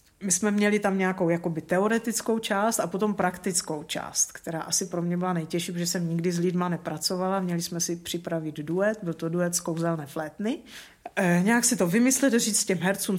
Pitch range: 180-220 Hz